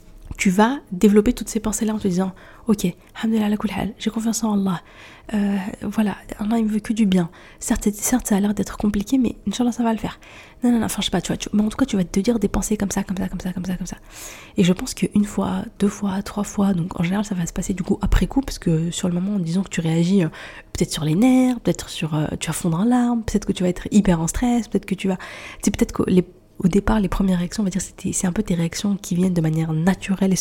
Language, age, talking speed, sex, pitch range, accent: French, 20-39, 290 wpm, female, 180-215 Hz, French